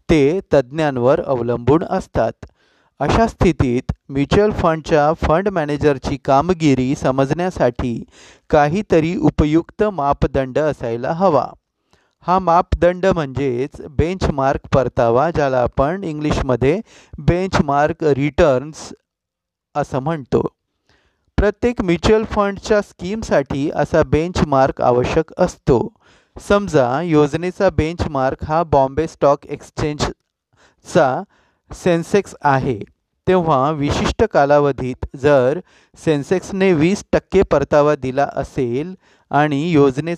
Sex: male